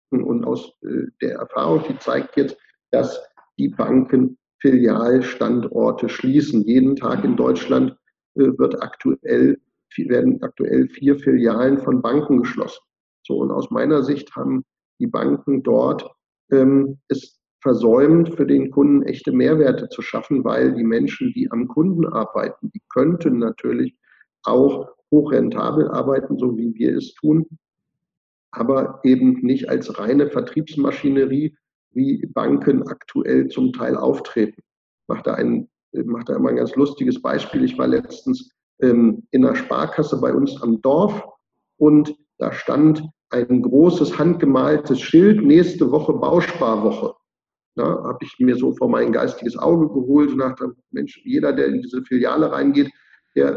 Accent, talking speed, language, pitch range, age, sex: German, 140 wpm, German, 130-195 Hz, 50-69, male